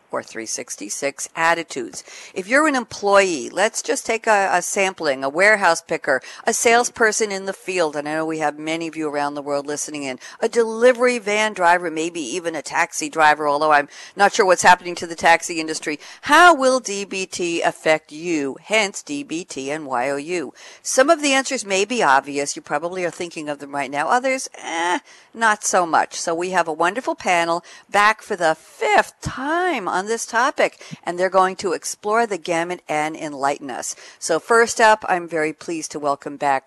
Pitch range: 155-235 Hz